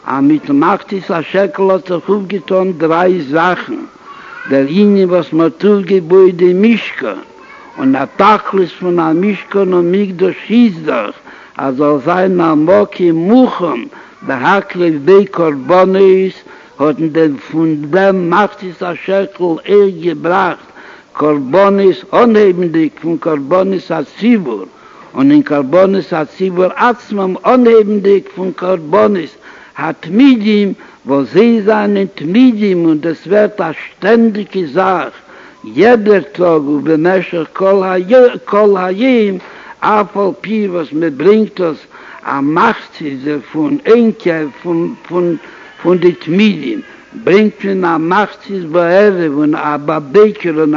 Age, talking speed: 60-79, 100 wpm